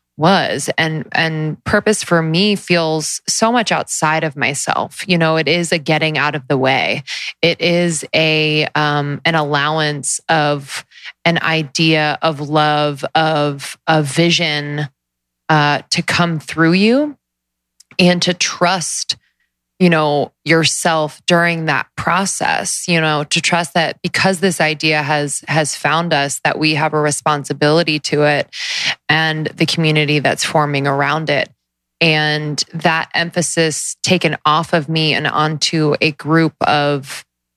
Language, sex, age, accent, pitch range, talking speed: English, female, 20-39, American, 145-165 Hz, 140 wpm